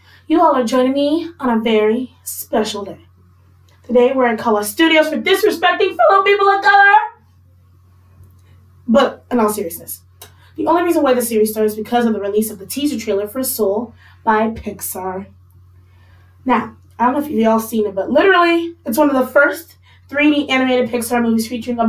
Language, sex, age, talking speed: English, female, 20-39, 185 wpm